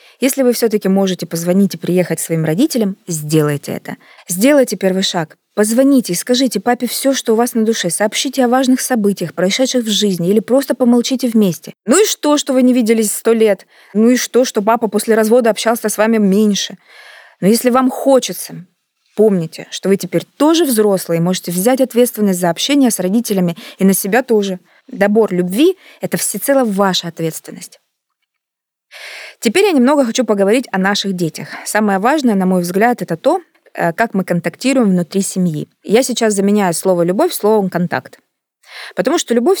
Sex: female